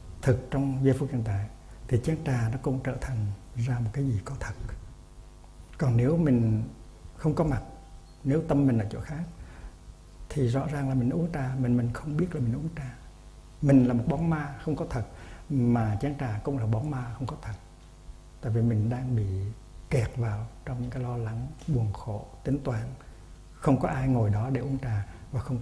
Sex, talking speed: male, 210 wpm